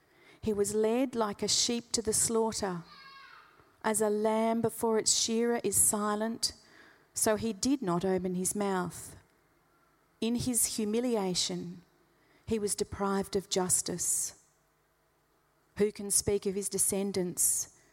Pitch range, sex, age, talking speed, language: 195-235 Hz, female, 40-59, 125 wpm, English